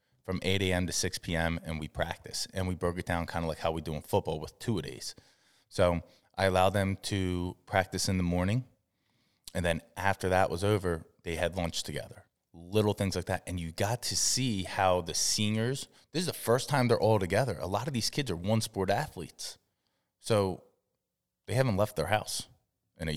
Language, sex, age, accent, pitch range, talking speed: English, male, 20-39, American, 90-125 Hz, 210 wpm